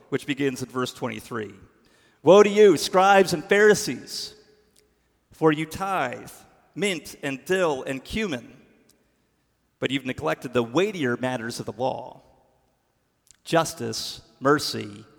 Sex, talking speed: male, 120 wpm